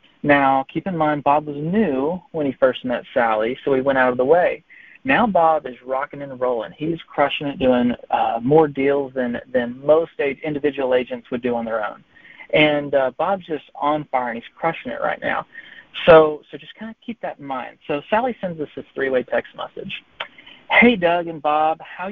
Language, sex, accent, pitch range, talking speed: English, male, American, 135-160 Hz, 210 wpm